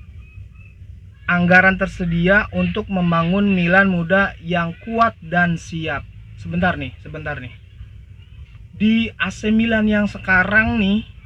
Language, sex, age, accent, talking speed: Indonesian, male, 30-49, native, 105 wpm